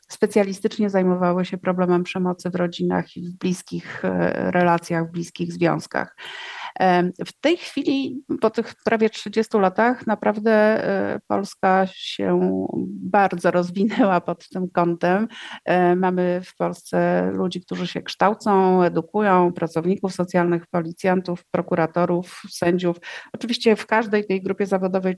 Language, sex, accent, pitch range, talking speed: Polish, female, native, 175-215 Hz, 115 wpm